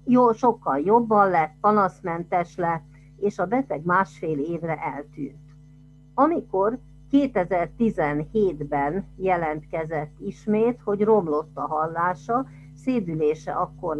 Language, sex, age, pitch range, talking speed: Hungarian, female, 50-69, 145-190 Hz, 95 wpm